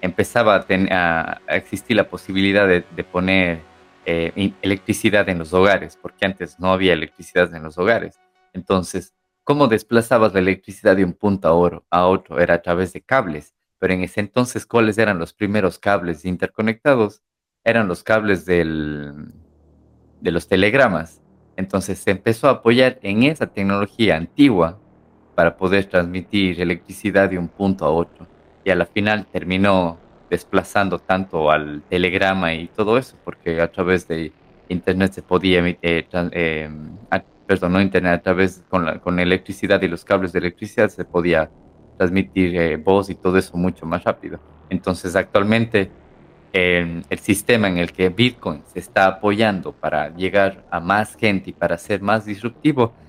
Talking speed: 155 wpm